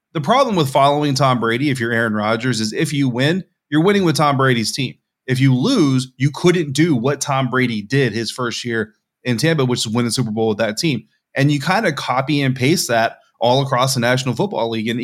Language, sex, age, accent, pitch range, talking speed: English, male, 30-49, American, 115-145 Hz, 235 wpm